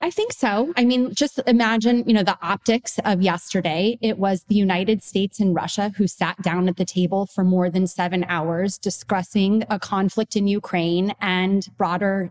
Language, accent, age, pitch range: English, American, 30-49, 180-220 Hz